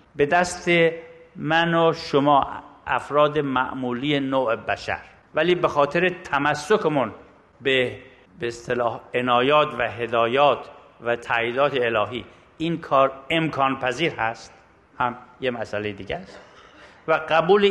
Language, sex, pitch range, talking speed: Persian, male, 125-160 Hz, 110 wpm